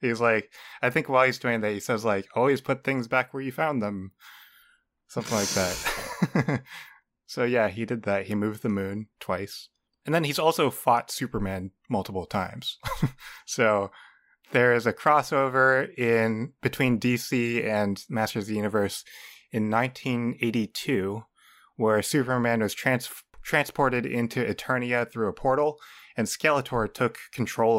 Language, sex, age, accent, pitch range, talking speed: English, male, 20-39, American, 105-125 Hz, 145 wpm